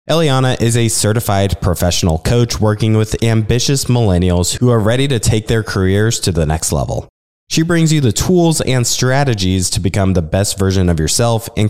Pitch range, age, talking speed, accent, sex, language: 90-120 Hz, 20-39, 185 wpm, American, male, English